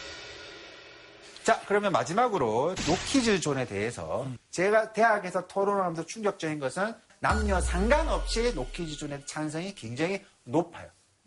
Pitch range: 180-290 Hz